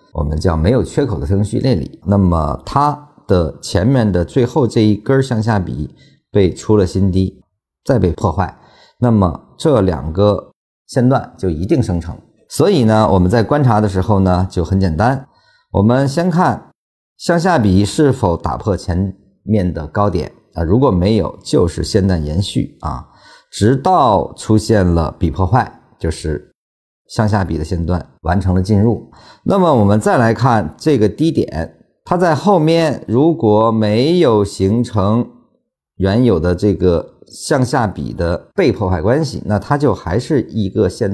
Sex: male